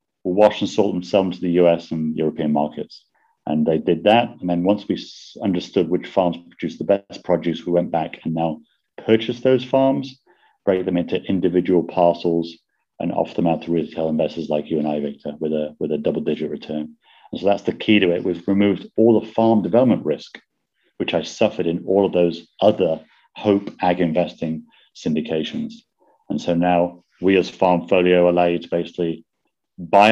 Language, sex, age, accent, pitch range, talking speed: English, male, 40-59, British, 85-105 Hz, 190 wpm